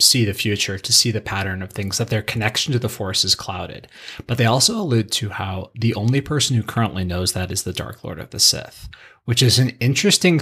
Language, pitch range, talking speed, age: English, 100-120 Hz, 235 wpm, 30-49